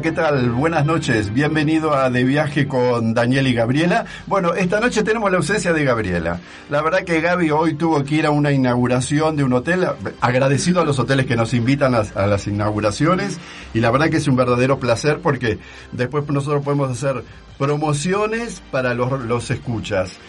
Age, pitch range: 50-69, 120-155 Hz